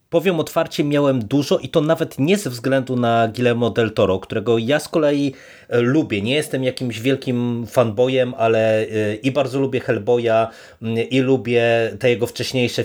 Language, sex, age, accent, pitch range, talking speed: Polish, male, 30-49, native, 115-140 Hz, 160 wpm